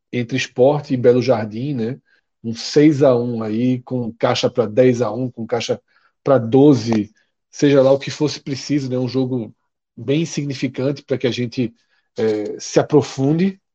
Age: 40-59